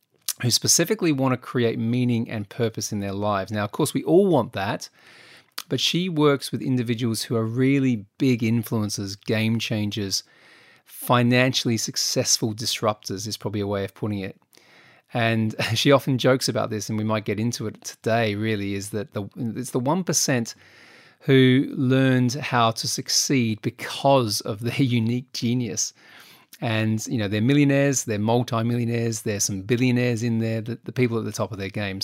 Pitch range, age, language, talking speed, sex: 110-130 Hz, 30-49, English, 170 wpm, male